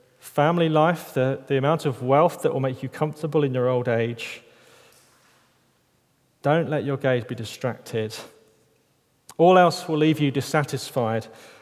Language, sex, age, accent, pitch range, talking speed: English, male, 30-49, British, 125-155 Hz, 145 wpm